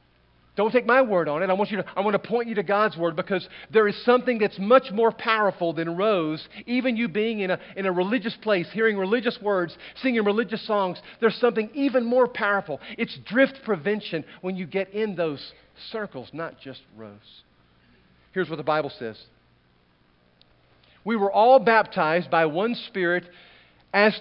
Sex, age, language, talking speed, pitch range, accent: male, 40-59, English, 170 wpm, 170-230 Hz, American